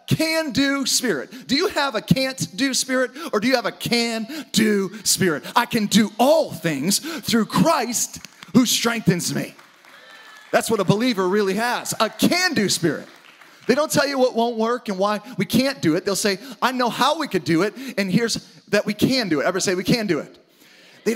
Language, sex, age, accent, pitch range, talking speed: English, male, 30-49, American, 195-255 Hz, 210 wpm